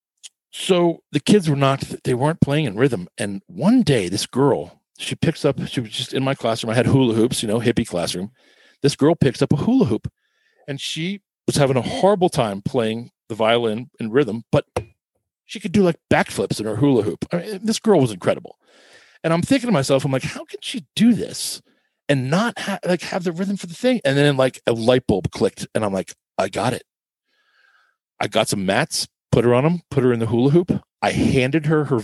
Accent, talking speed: American, 220 wpm